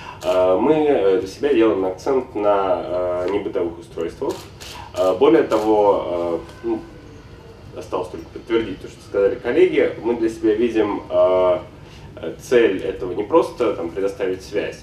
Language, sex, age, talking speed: Russian, male, 20-39, 140 wpm